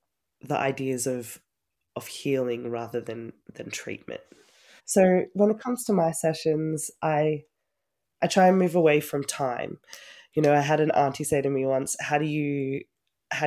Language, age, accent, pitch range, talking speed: English, 20-39, Australian, 125-150 Hz, 170 wpm